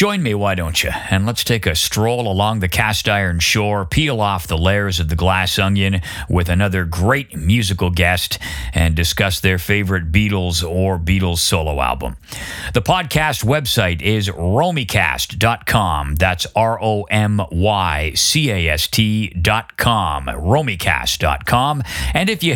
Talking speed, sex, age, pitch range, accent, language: 130 wpm, male, 50-69, 90-115 Hz, American, English